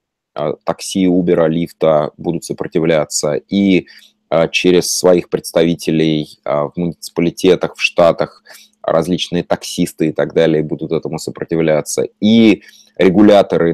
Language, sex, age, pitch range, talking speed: Russian, male, 20-39, 85-110 Hz, 100 wpm